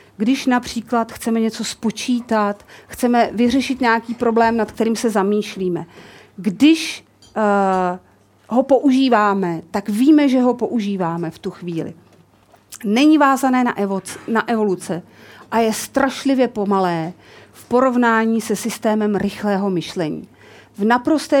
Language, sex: Czech, female